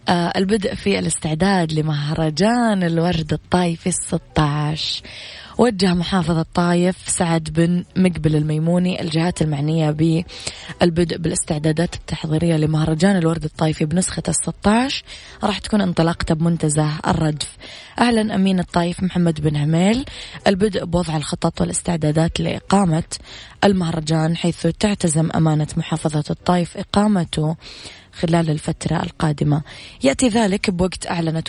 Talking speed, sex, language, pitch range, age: 105 wpm, female, Arabic, 155-180 Hz, 20-39